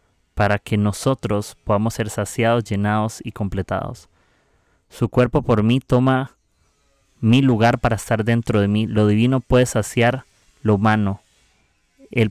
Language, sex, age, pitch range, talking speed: Spanish, male, 30-49, 105-120 Hz, 135 wpm